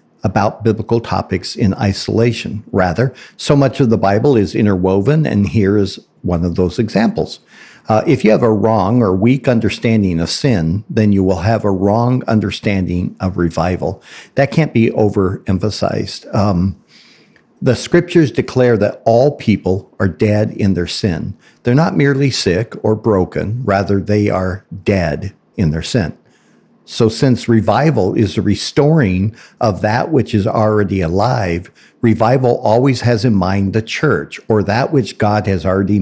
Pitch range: 100-125 Hz